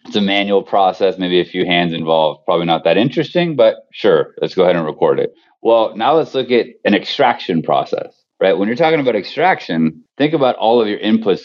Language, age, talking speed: English, 30-49, 215 wpm